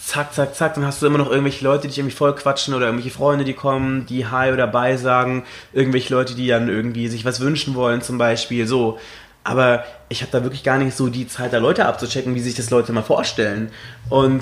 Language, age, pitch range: German, 20-39, 120-140 Hz